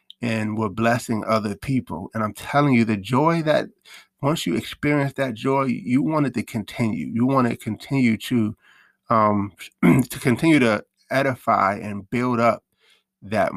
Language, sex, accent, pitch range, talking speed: English, male, American, 110-130 Hz, 160 wpm